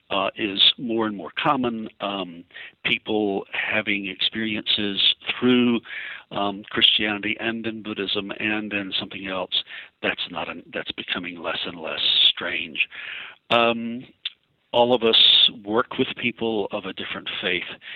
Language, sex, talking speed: English, male, 135 wpm